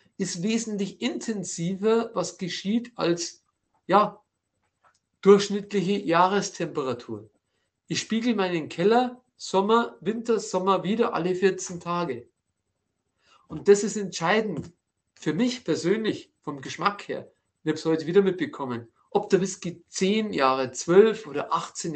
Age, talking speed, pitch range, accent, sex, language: 50-69, 120 wpm, 140-200 Hz, German, male, German